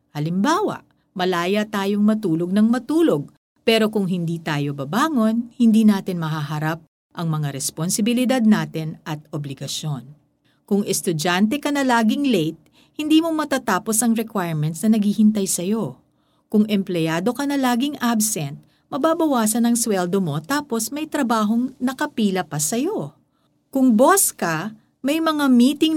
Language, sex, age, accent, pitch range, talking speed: Filipino, female, 50-69, native, 160-240 Hz, 130 wpm